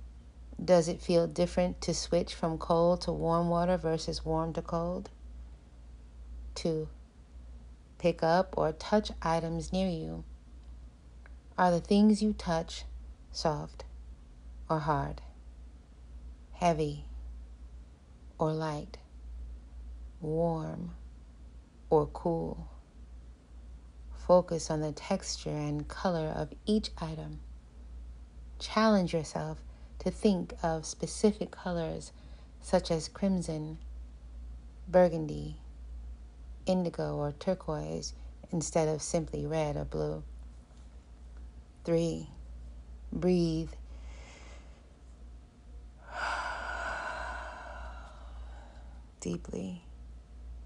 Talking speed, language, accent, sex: 80 wpm, English, American, female